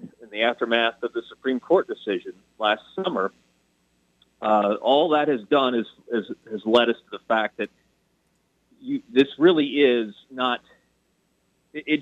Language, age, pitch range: English, 40-59, 115-160 Hz